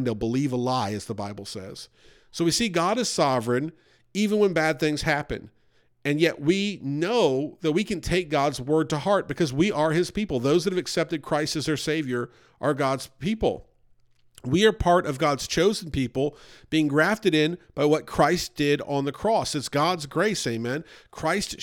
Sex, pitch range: male, 135-175 Hz